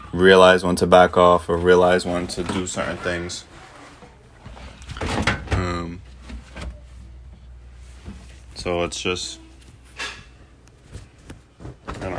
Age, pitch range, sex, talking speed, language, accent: 20-39, 70-95 Hz, male, 90 wpm, English, American